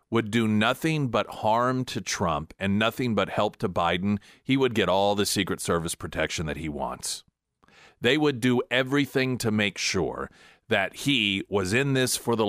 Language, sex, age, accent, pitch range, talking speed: English, male, 40-59, American, 90-110 Hz, 185 wpm